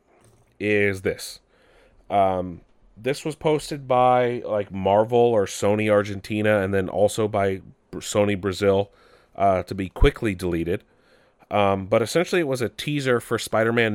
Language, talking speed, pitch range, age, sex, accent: English, 140 wpm, 100-125 Hz, 30-49, male, American